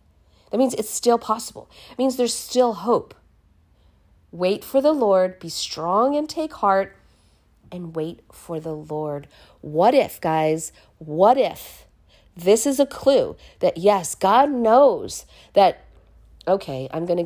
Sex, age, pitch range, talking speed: female, 40-59, 160-245 Hz, 145 wpm